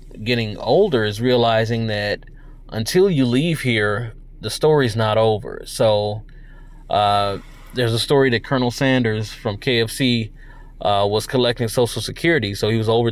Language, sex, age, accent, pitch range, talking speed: English, male, 20-39, American, 110-135 Hz, 145 wpm